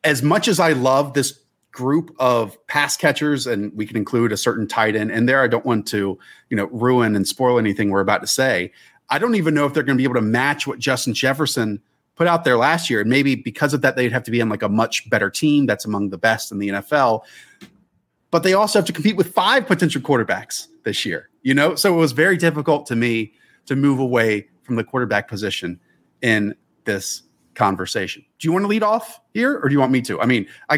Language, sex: English, male